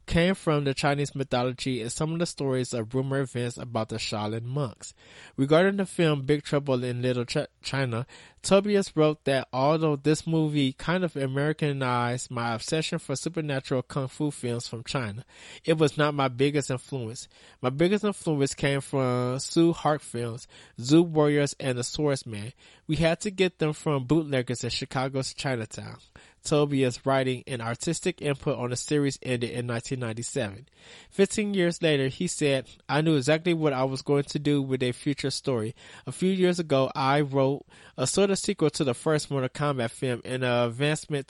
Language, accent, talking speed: English, American, 175 wpm